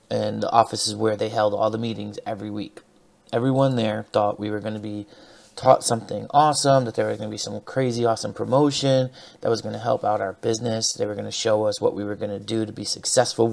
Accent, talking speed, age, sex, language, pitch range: American, 250 wpm, 30-49, male, English, 110-135 Hz